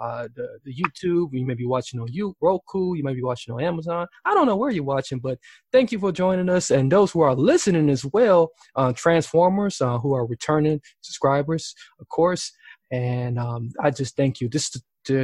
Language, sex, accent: English, male, American